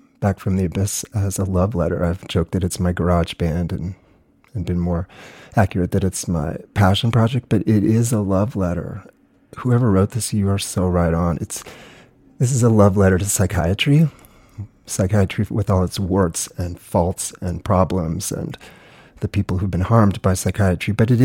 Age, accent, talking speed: 40-59, American, 185 wpm